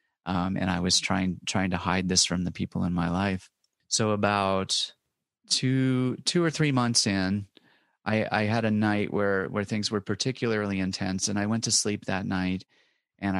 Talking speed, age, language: 190 wpm, 30-49, English